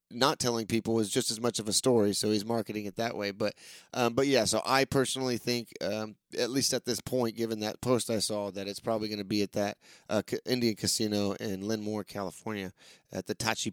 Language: English